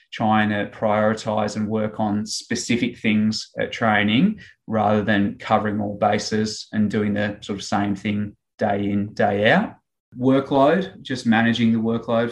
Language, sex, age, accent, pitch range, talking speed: English, male, 20-39, Australian, 110-120 Hz, 150 wpm